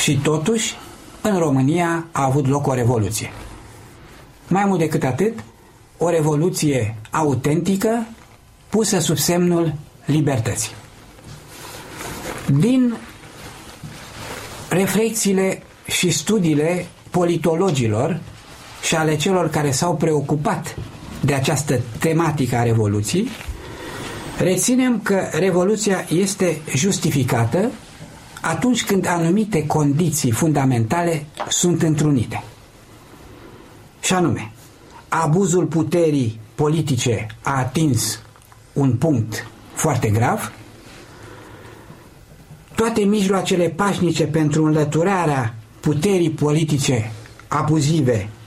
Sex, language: male, Romanian